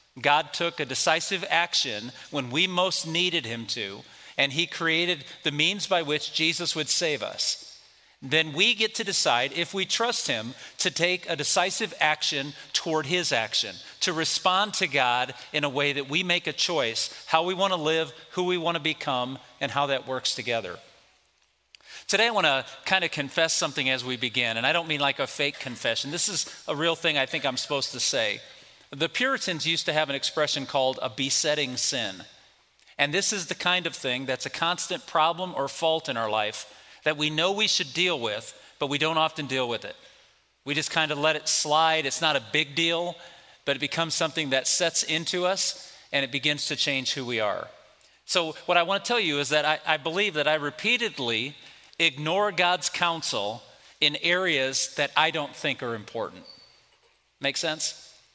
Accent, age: American, 40-59